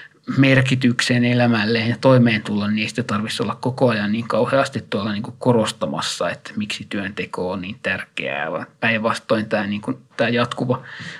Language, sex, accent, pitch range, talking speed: Finnish, male, native, 110-125 Hz, 145 wpm